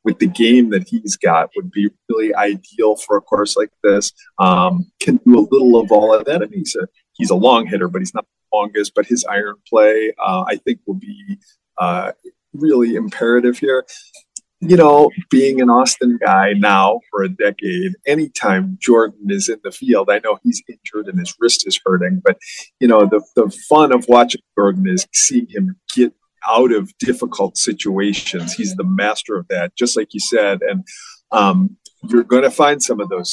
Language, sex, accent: English, male, American